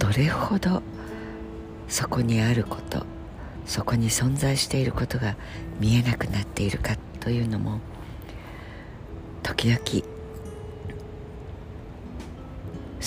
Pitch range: 85-120 Hz